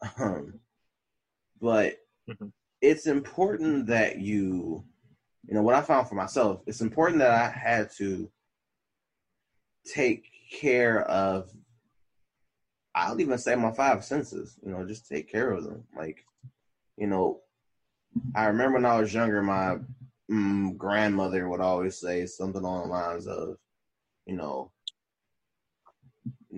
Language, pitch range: English, 95-115 Hz